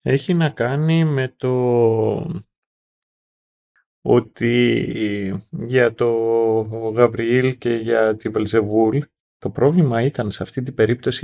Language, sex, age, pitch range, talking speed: Greek, male, 30-49, 110-145 Hz, 105 wpm